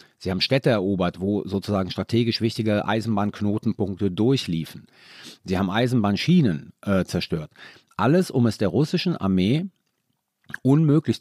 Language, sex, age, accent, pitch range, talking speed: German, male, 40-59, German, 100-130 Hz, 120 wpm